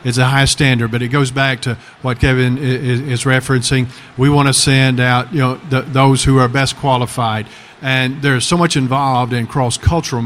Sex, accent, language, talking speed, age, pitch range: male, American, English, 195 wpm, 50-69, 125-145 Hz